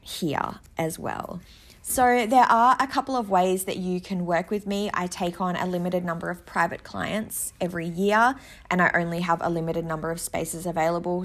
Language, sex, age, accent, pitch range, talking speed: English, female, 20-39, Australian, 165-195 Hz, 195 wpm